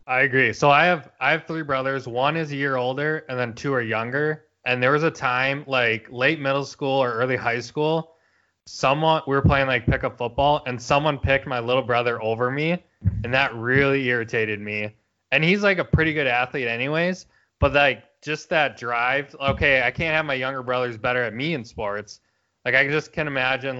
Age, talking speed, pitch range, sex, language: 20-39, 205 wpm, 115-140 Hz, male, English